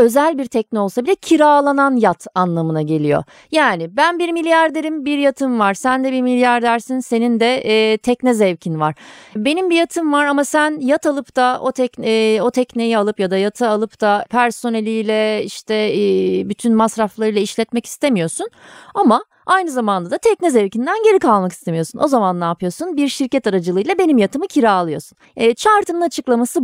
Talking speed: 170 wpm